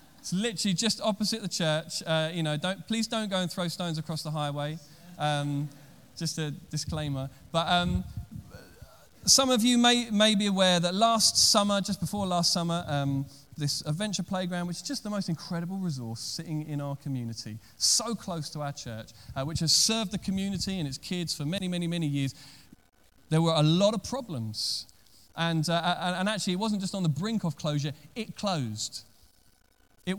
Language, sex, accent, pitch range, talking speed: English, male, British, 145-195 Hz, 185 wpm